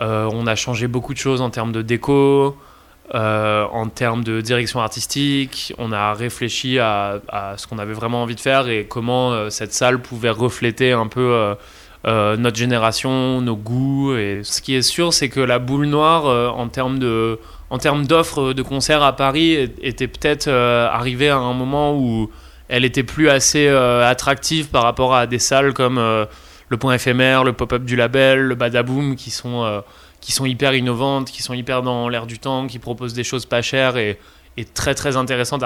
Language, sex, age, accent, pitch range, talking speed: French, male, 20-39, French, 115-135 Hz, 200 wpm